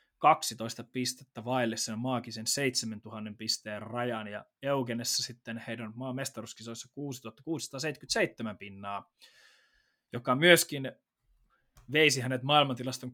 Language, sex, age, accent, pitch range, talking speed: Finnish, male, 20-39, native, 120-150 Hz, 85 wpm